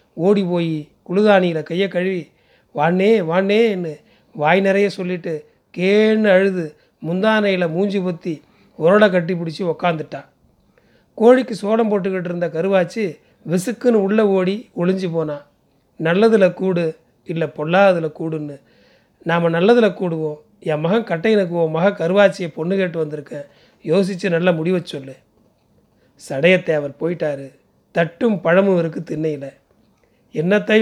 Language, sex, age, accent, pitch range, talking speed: Tamil, male, 30-49, native, 165-200 Hz, 110 wpm